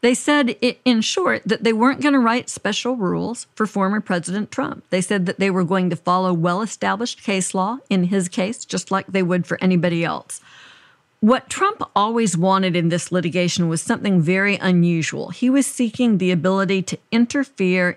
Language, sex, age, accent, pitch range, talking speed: English, female, 50-69, American, 180-230 Hz, 185 wpm